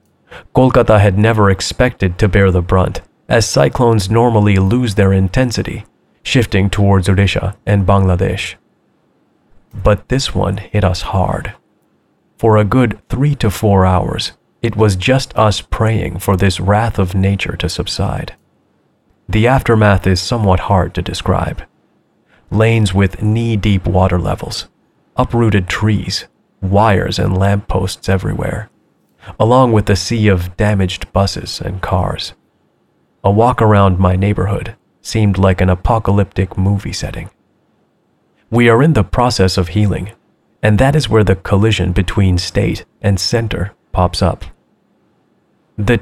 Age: 30-49